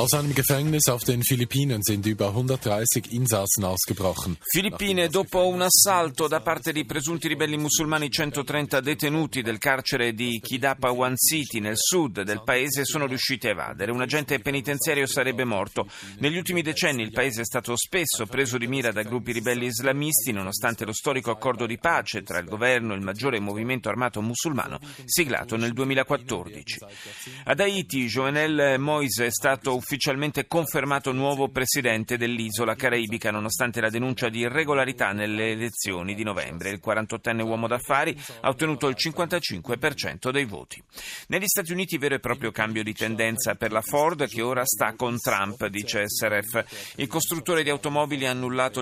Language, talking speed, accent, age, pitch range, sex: Italian, 150 wpm, native, 40-59, 110-145 Hz, male